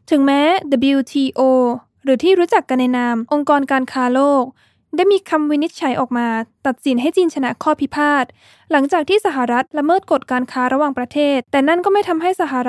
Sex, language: female, Thai